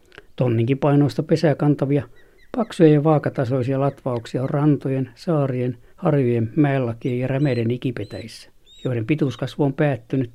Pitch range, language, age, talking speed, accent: 120-150 Hz, Finnish, 60-79, 115 wpm, native